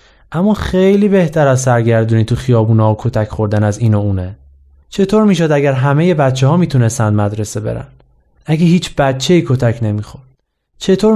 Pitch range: 120-155 Hz